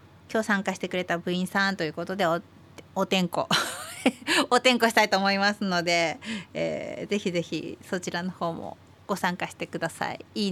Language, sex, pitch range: Japanese, female, 170-220 Hz